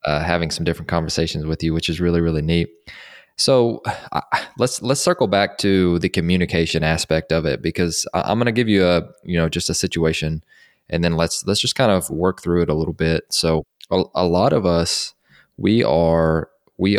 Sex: male